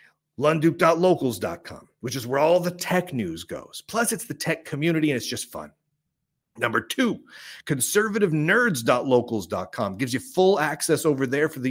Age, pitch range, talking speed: 40-59, 130-175 Hz, 150 wpm